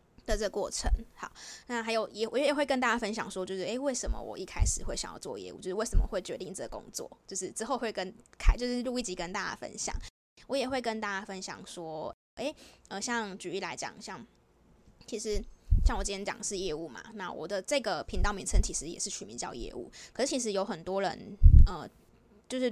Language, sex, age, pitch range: Chinese, female, 20-39, 195-240 Hz